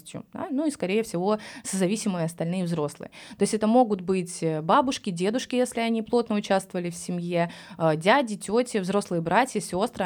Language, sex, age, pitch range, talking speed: Russian, female, 20-39, 175-230 Hz, 155 wpm